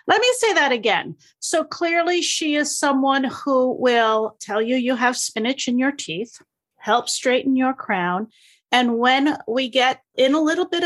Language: English